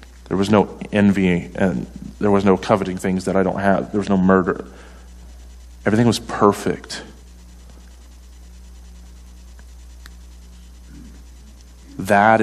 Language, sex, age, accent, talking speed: English, male, 40-59, American, 105 wpm